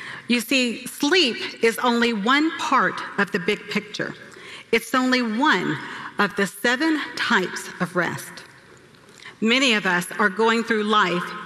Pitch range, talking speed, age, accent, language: 185-245 Hz, 140 wpm, 40-59, American, English